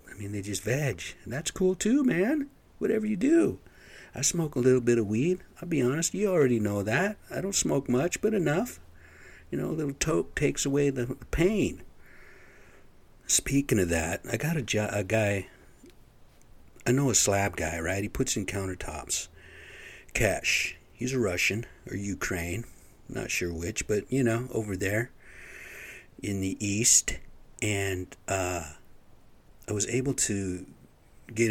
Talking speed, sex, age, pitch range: 160 wpm, male, 60-79, 95-125 Hz